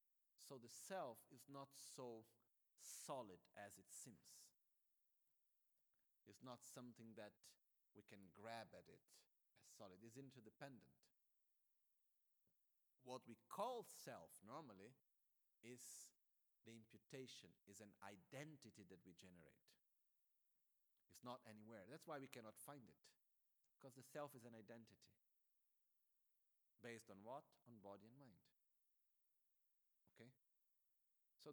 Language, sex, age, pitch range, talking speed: Italian, male, 50-69, 110-135 Hz, 115 wpm